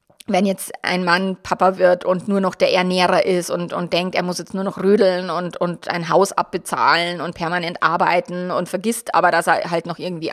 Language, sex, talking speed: German, female, 215 wpm